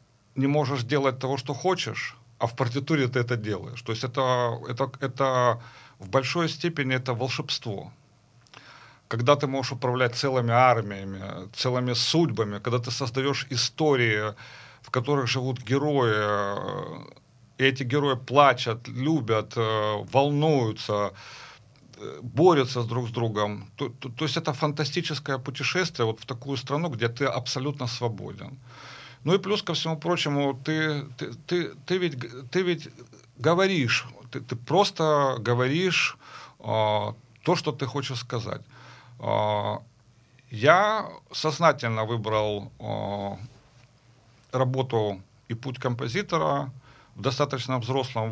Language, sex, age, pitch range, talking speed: Ukrainian, male, 40-59, 115-145 Hz, 120 wpm